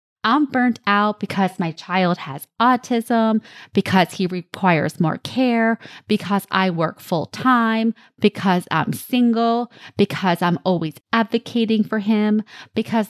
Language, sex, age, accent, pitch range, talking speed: English, female, 20-39, American, 185-230 Hz, 125 wpm